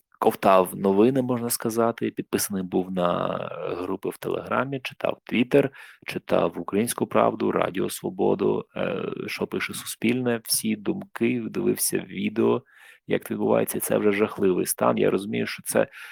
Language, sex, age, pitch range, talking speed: Ukrainian, male, 30-49, 95-125 Hz, 125 wpm